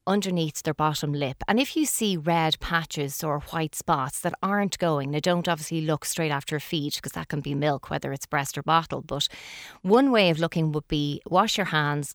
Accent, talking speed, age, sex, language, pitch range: Irish, 215 wpm, 30-49, female, English, 150-190 Hz